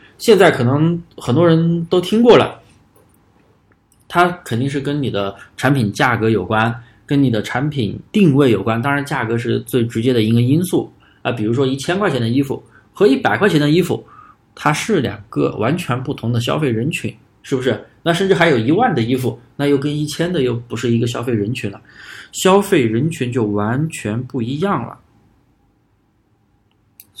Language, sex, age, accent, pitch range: Chinese, male, 20-39, native, 110-145 Hz